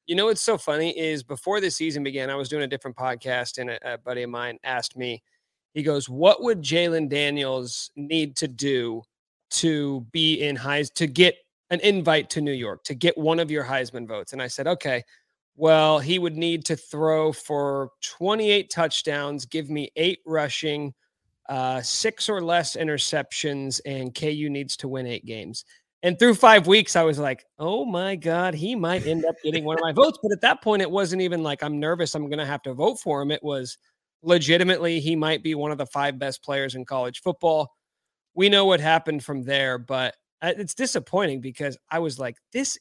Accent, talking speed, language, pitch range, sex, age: American, 205 wpm, English, 140-185 Hz, male, 30-49